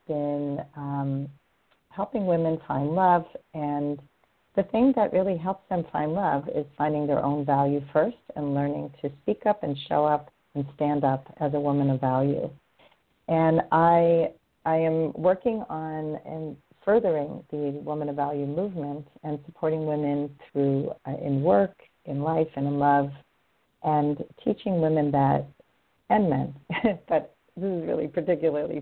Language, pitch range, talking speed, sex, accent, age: English, 145-175 Hz, 150 wpm, female, American, 40-59